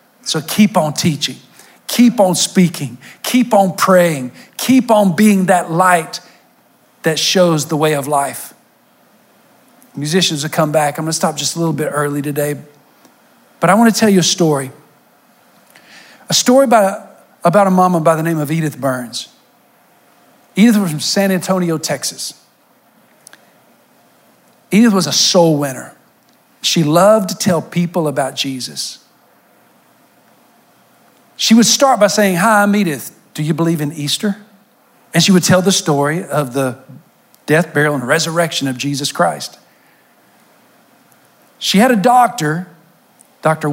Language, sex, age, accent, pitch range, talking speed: English, male, 50-69, American, 150-195 Hz, 145 wpm